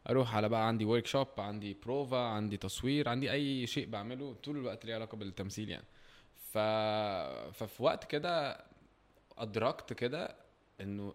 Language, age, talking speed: Arabic, 20-39, 135 wpm